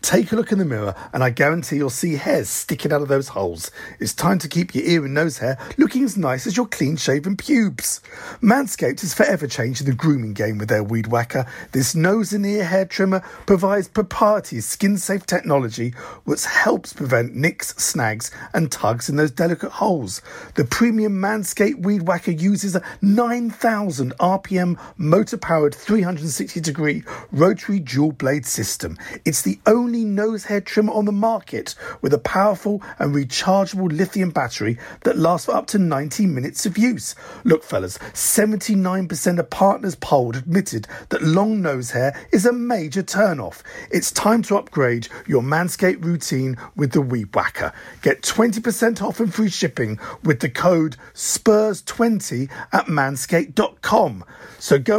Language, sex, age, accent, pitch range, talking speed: English, male, 50-69, British, 140-210 Hz, 160 wpm